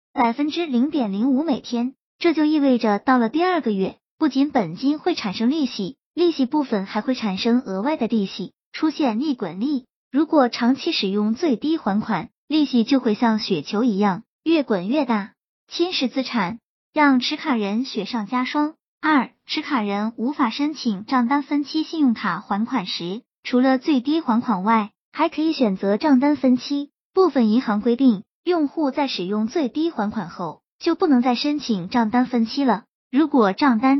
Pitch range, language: 220-290 Hz, Chinese